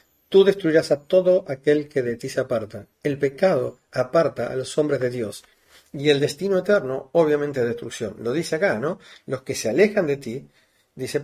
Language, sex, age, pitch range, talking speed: Spanish, male, 40-59, 130-165 Hz, 190 wpm